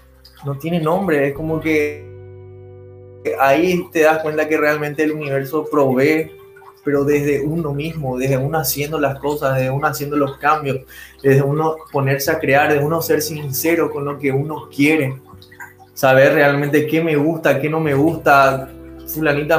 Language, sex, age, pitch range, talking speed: Spanish, male, 20-39, 135-155 Hz, 160 wpm